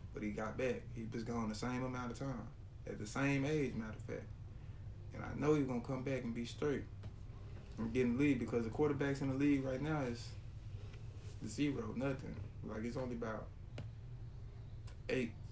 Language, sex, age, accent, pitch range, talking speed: English, male, 20-39, American, 115-125 Hz, 195 wpm